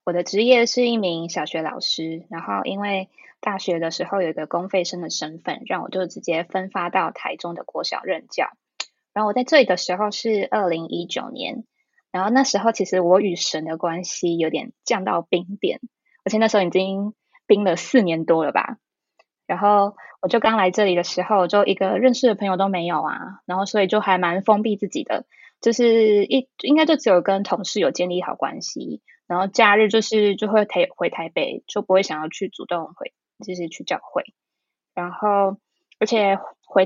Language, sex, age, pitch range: Chinese, female, 20-39, 175-215 Hz